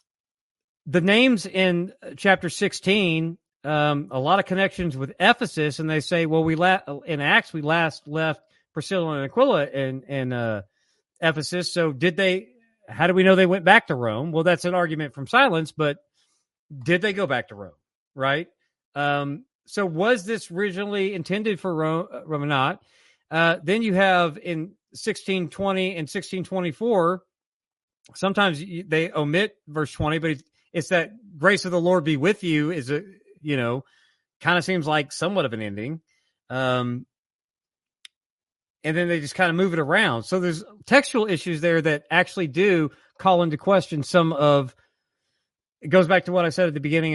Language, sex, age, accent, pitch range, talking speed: English, male, 40-59, American, 155-185 Hz, 175 wpm